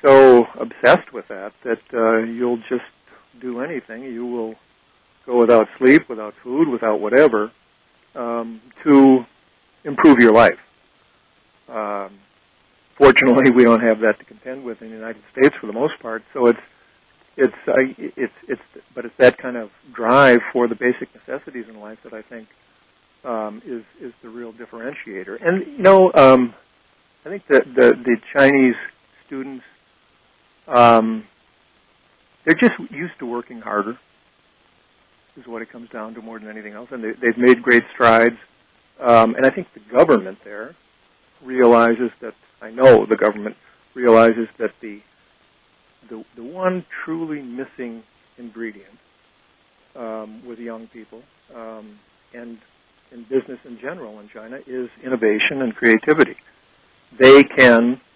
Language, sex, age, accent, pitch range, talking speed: English, male, 50-69, American, 110-130 Hz, 145 wpm